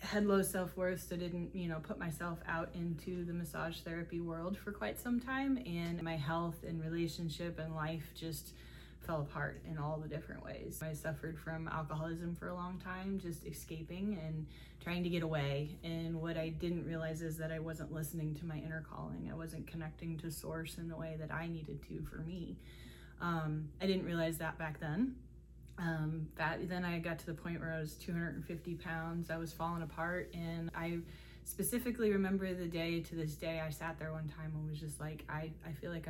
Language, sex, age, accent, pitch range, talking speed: English, female, 20-39, American, 155-170 Hz, 205 wpm